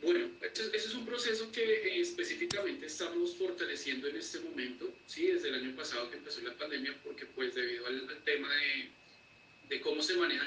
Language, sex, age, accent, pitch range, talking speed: Spanish, male, 30-49, Colombian, 335-390 Hz, 195 wpm